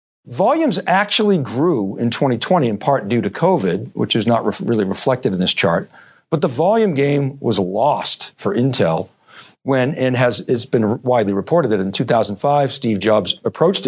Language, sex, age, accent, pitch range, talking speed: English, male, 50-69, American, 110-165 Hz, 175 wpm